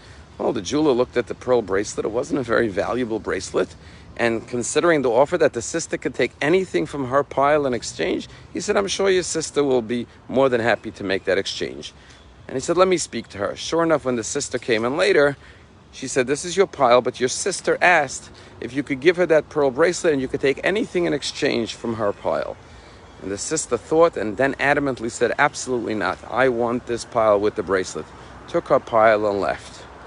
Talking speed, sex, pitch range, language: 220 wpm, male, 105-145 Hz, English